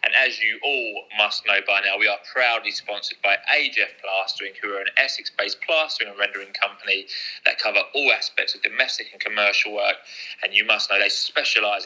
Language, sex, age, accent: English, male, 20-39, British